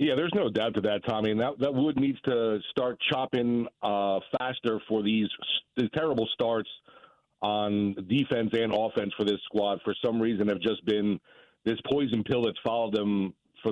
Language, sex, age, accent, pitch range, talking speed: English, male, 40-59, American, 110-130 Hz, 185 wpm